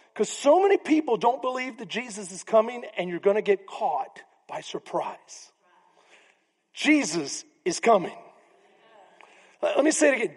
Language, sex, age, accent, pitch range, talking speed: English, male, 40-59, American, 205-305 Hz, 150 wpm